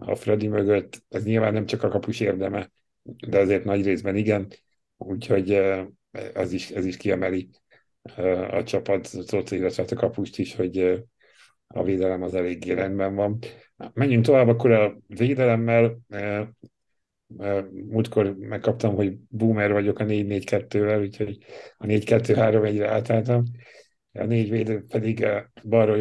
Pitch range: 100-115 Hz